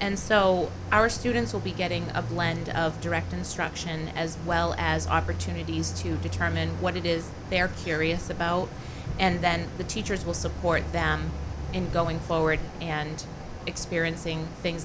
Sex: female